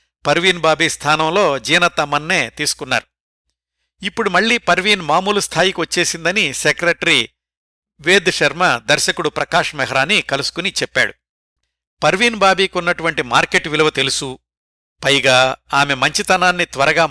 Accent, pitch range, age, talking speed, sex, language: native, 115-165 Hz, 60-79, 90 wpm, male, Telugu